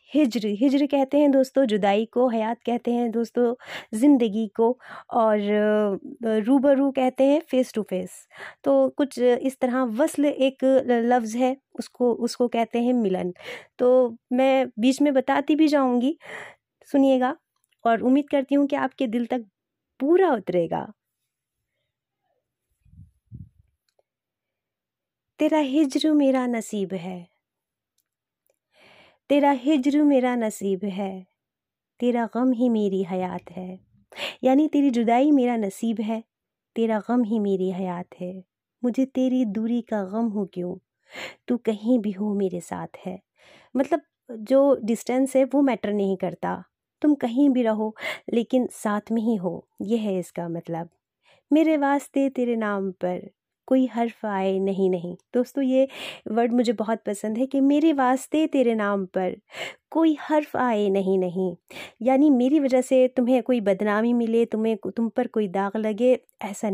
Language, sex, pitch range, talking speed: Hindi, female, 210-270 Hz, 140 wpm